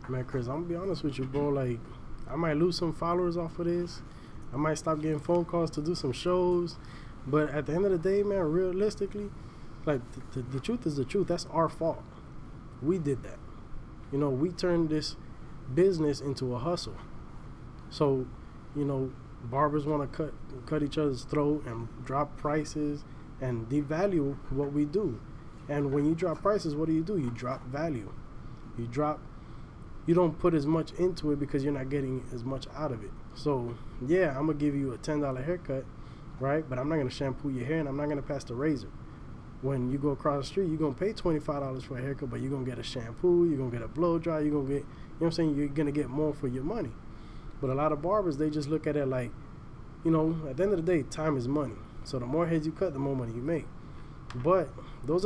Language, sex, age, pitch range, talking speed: English, male, 20-39, 130-160 Hz, 235 wpm